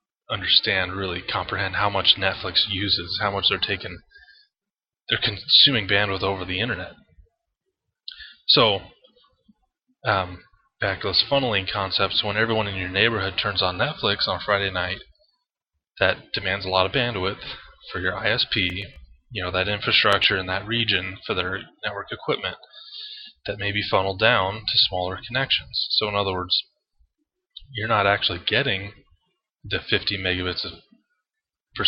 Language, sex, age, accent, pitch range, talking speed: English, male, 20-39, American, 95-140 Hz, 140 wpm